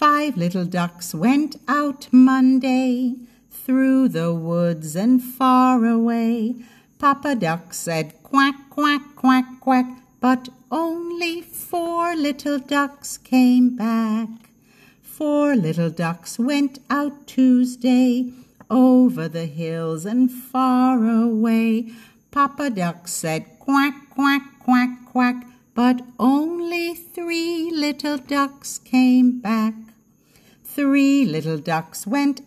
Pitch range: 225-280 Hz